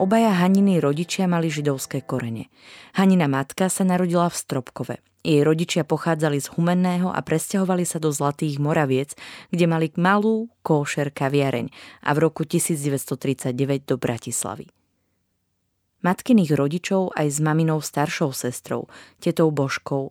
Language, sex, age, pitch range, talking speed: Slovak, female, 20-39, 135-170 Hz, 130 wpm